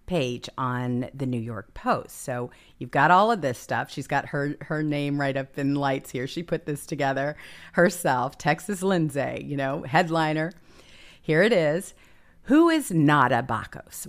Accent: American